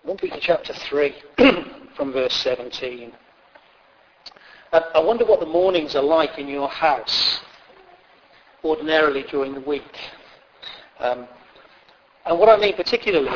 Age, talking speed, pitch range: 40-59, 120 wpm, 145-190 Hz